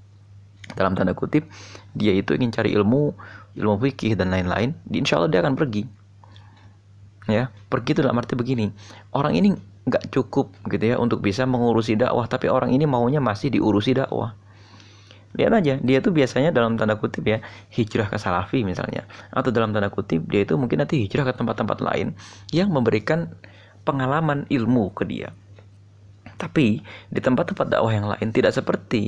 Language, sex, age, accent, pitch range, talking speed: Indonesian, male, 30-49, native, 100-130 Hz, 165 wpm